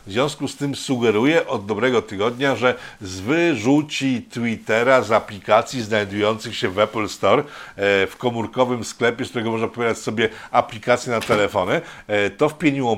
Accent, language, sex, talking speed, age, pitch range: native, Polish, male, 150 wpm, 50-69, 115-150 Hz